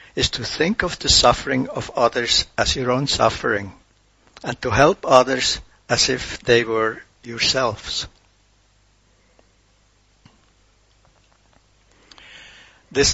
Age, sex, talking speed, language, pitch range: 60-79, male, 100 wpm, English, 100-125 Hz